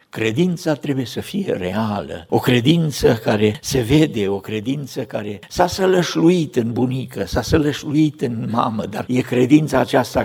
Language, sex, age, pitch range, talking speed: Romanian, male, 60-79, 105-155 Hz, 145 wpm